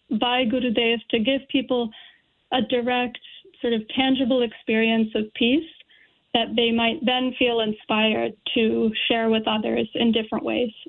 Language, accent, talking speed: English, American, 145 wpm